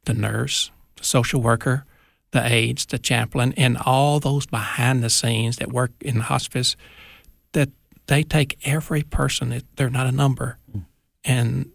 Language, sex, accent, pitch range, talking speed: English, male, American, 115-135 Hz, 145 wpm